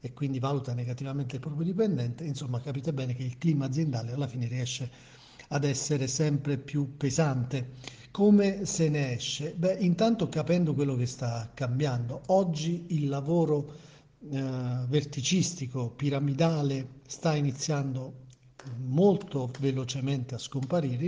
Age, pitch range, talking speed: 50-69, 130-165 Hz, 130 wpm